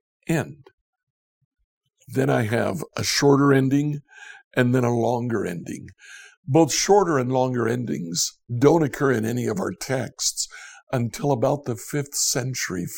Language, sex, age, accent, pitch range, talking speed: English, male, 60-79, American, 120-180 Hz, 135 wpm